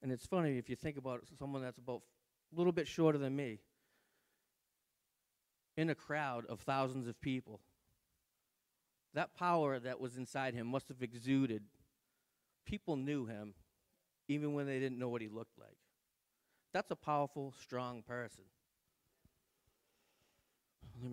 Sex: male